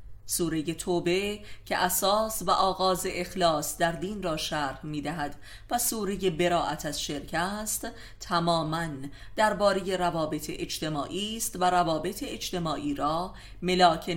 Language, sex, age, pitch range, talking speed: Persian, female, 30-49, 145-185 Hz, 125 wpm